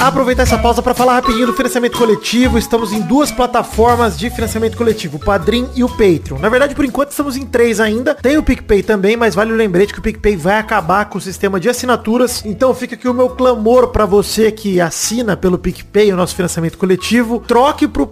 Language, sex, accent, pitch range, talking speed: Portuguese, male, Brazilian, 195-245 Hz, 215 wpm